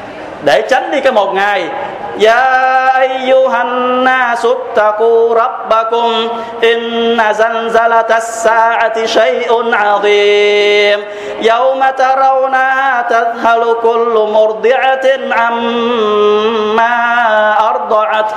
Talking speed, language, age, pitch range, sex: 75 wpm, Vietnamese, 20-39, 210-255 Hz, male